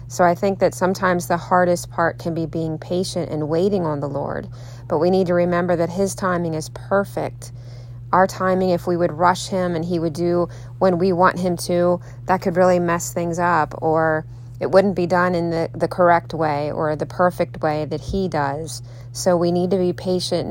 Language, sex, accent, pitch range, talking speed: English, female, American, 140-180 Hz, 210 wpm